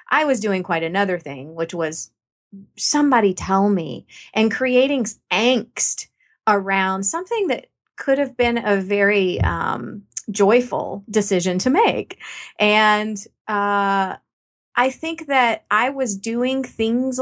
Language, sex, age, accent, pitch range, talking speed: English, female, 30-49, American, 180-230 Hz, 125 wpm